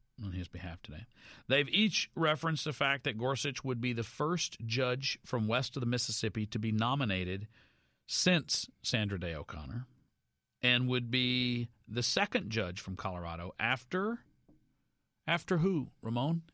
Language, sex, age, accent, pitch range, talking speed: English, male, 50-69, American, 110-140 Hz, 145 wpm